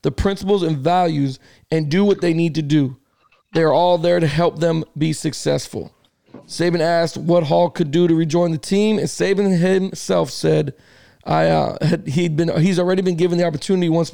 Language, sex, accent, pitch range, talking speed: English, male, American, 160-185 Hz, 185 wpm